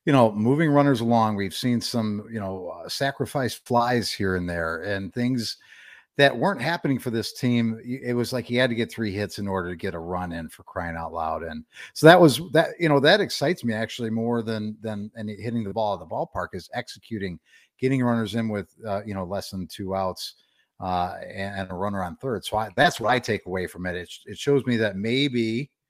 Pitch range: 100-125 Hz